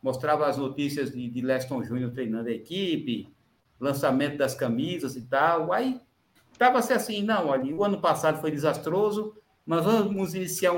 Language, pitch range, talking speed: Portuguese, 135-205 Hz, 155 wpm